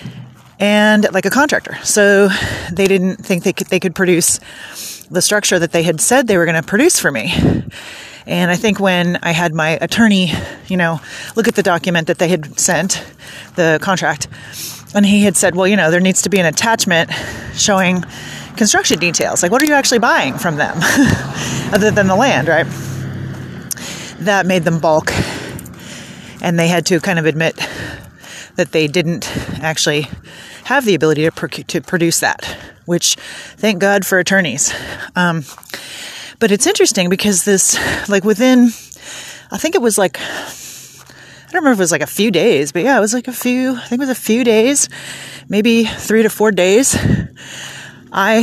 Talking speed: 180 wpm